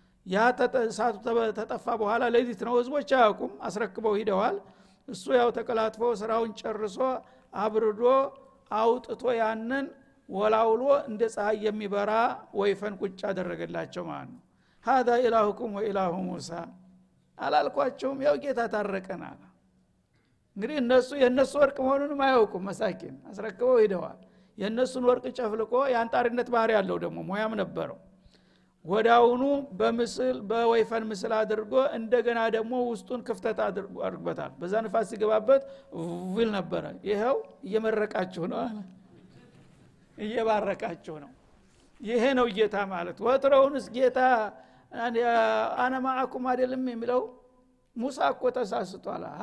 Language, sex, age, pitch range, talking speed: Amharic, male, 60-79, 210-250 Hz, 85 wpm